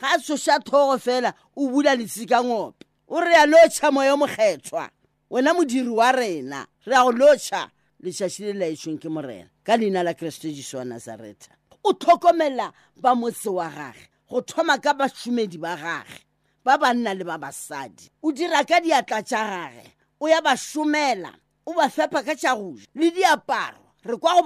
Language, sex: English, female